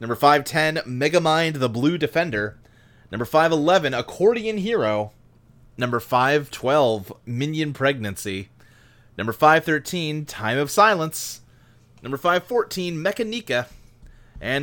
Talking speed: 95 wpm